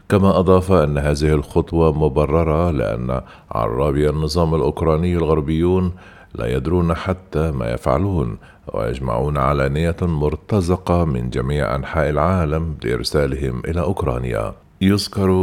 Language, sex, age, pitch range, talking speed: Arabic, male, 50-69, 70-85 Hz, 105 wpm